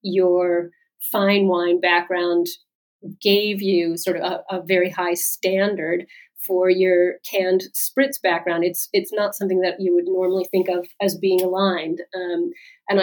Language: English